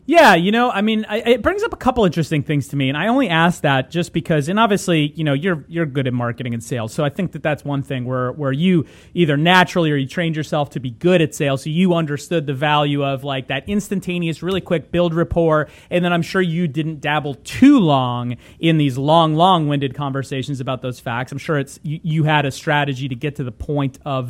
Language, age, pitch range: English, 30-49, 145-185 Hz